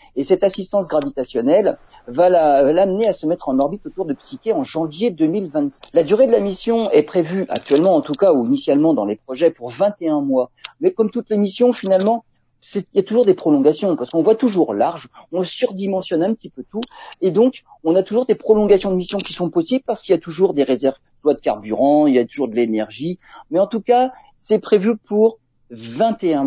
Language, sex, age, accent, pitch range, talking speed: French, male, 50-69, French, 155-230 Hz, 220 wpm